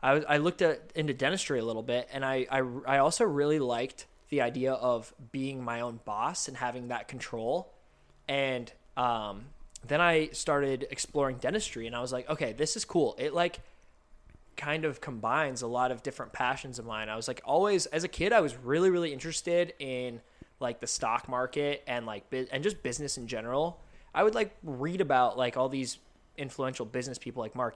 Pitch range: 120-150 Hz